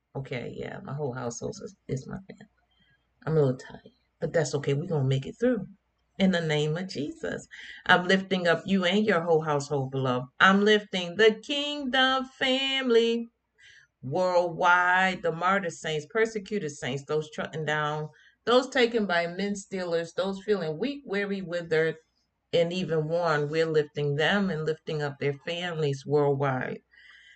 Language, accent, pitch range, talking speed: English, American, 155-210 Hz, 160 wpm